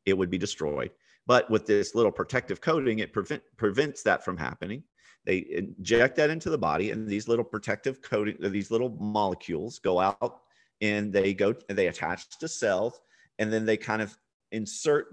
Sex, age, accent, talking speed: male, 40-59, American, 185 wpm